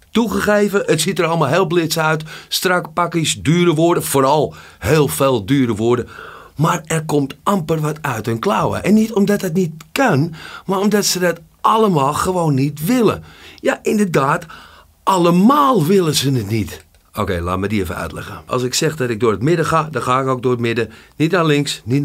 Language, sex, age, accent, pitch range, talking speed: Dutch, male, 50-69, Dutch, 130-190 Hz, 200 wpm